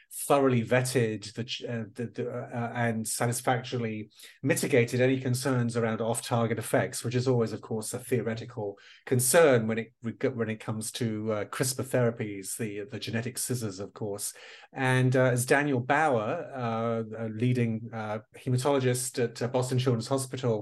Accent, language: British, English